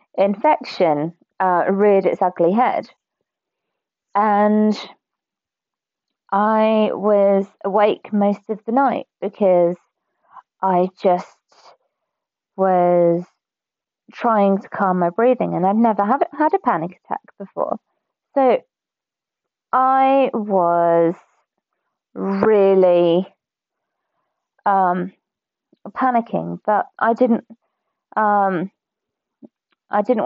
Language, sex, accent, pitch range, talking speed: English, female, British, 185-225 Hz, 85 wpm